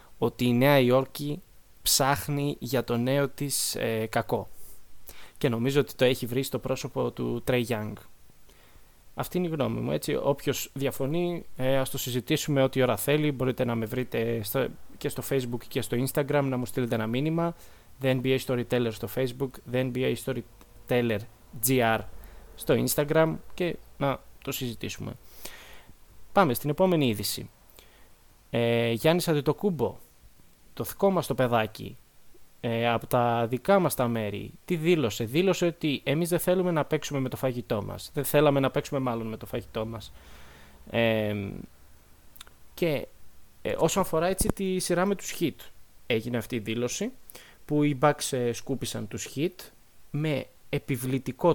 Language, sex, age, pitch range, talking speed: Greek, male, 20-39, 115-145 Hz, 150 wpm